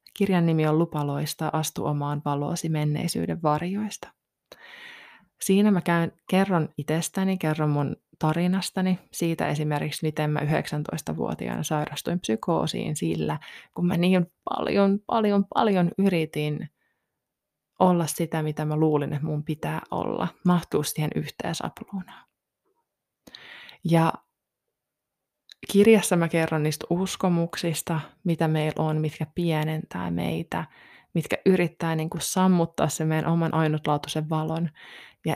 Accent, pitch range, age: native, 155-185 Hz, 20-39